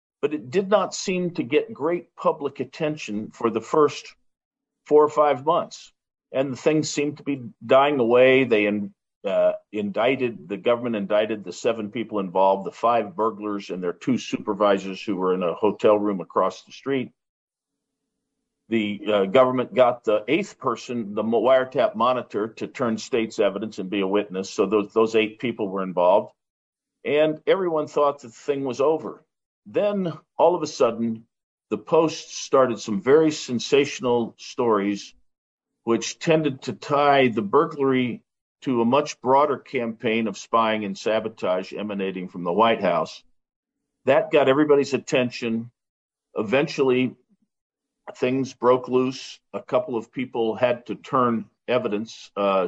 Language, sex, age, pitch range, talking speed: English, male, 50-69, 105-140 Hz, 150 wpm